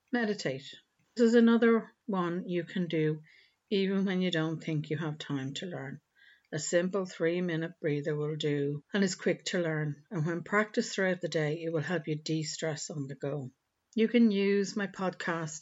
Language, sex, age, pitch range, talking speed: English, female, 60-79, 155-195 Hz, 190 wpm